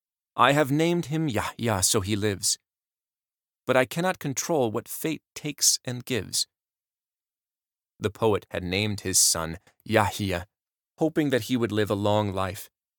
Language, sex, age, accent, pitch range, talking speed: English, male, 30-49, American, 100-125 Hz, 150 wpm